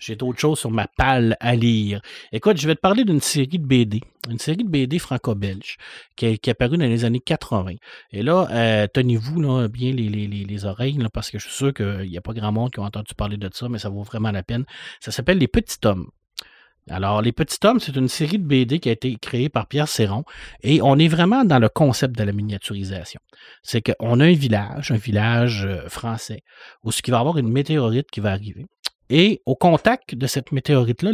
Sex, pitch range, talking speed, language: male, 115-155 Hz, 230 wpm, French